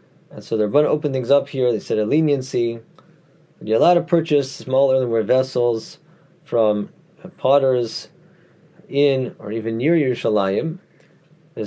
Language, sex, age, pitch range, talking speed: English, male, 30-49, 115-160 Hz, 150 wpm